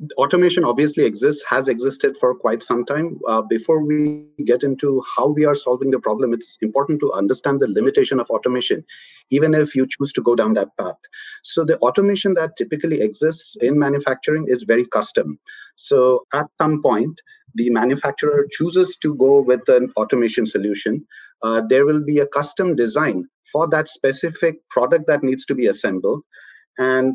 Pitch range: 130-180 Hz